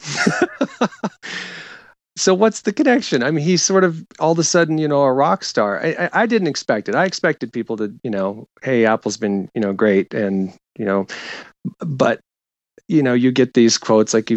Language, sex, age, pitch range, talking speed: English, male, 40-59, 105-150 Hz, 195 wpm